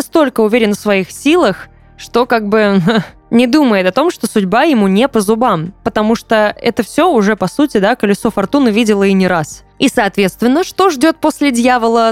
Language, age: Russian, 20-39